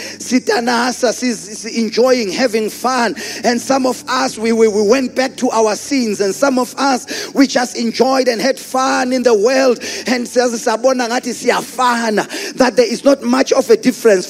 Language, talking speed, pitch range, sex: English, 160 wpm, 245-305 Hz, male